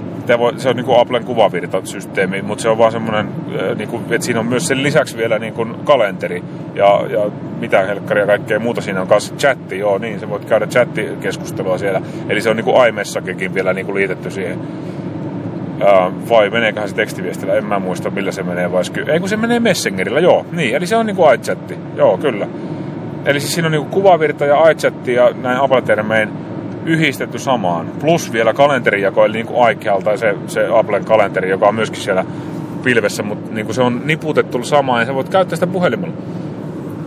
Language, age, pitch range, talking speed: Finnish, 30-49, 140-185 Hz, 190 wpm